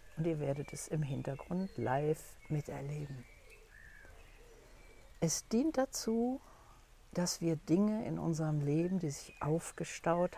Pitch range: 145-180 Hz